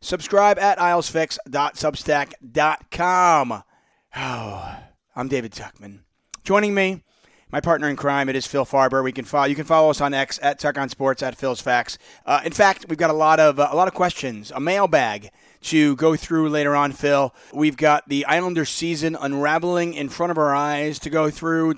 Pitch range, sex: 145-175 Hz, male